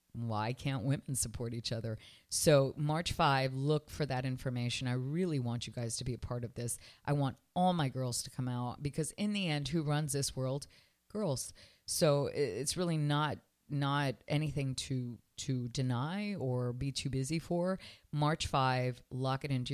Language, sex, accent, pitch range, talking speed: English, female, American, 115-150 Hz, 180 wpm